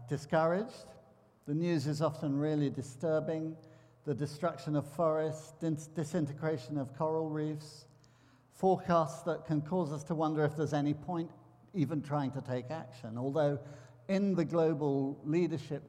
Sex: male